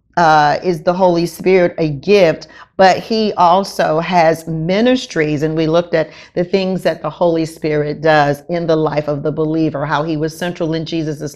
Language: English